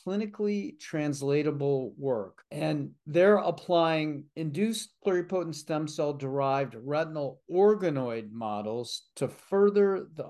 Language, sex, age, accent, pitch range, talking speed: English, male, 50-69, American, 125-160 Hz, 95 wpm